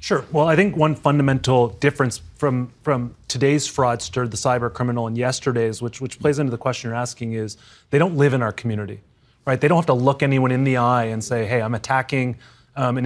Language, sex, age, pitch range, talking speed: English, male, 30-49, 120-140 Hz, 220 wpm